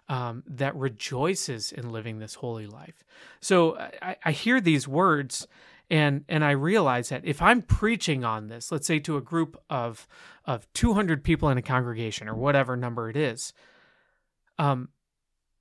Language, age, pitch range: English, 30-49, 135-175 Hz